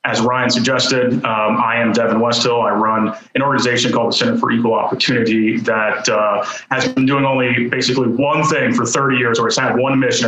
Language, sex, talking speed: English, male, 205 wpm